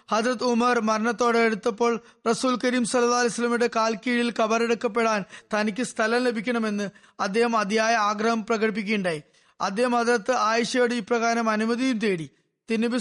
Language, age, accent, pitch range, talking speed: Malayalam, 20-39, native, 215-245 Hz, 110 wpm